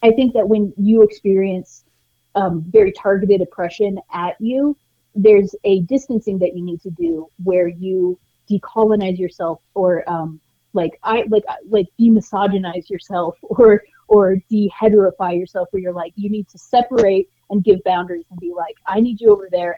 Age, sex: 30-49, female